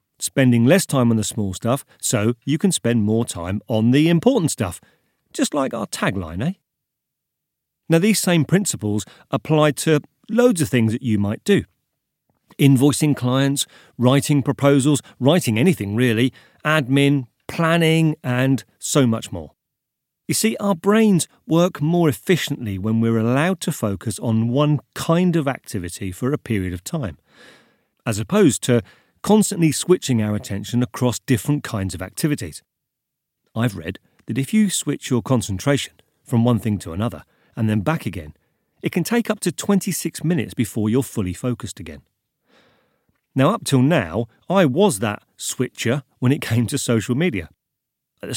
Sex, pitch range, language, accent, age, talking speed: male, 115-155 Hz, English, British, 40-59, 160 wpm